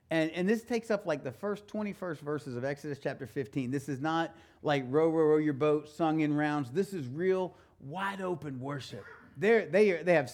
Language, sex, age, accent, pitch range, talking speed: English, male, 40-59, American, 115-150 Hz, 205 wpm